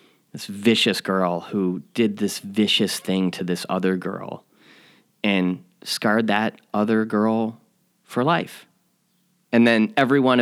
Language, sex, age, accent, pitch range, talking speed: English, male, 30-49, American, 100-120 Hz, 125 wpm